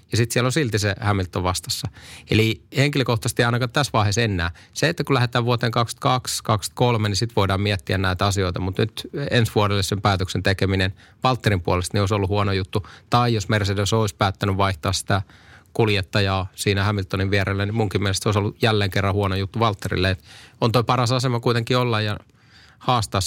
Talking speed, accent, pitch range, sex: 180 wpm, native, 95-115 Hz, male